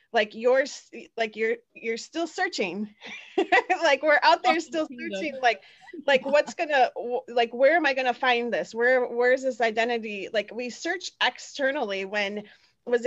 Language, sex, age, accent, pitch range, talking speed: English, female, 30-49, American, 210-255 Hz, 155 wpm